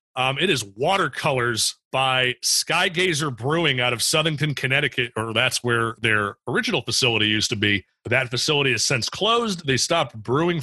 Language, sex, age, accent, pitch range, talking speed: English, male, 30-49, American, 115-140 Hz, 160 wpm